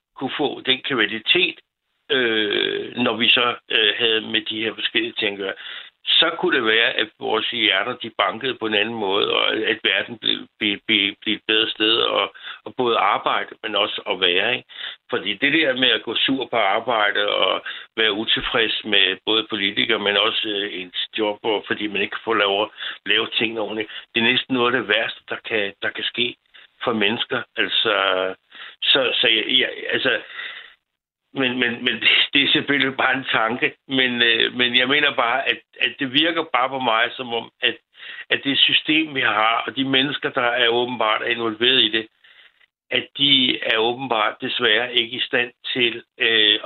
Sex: male